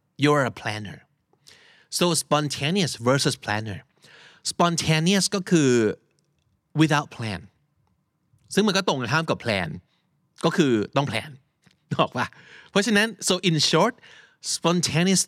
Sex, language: male, Thai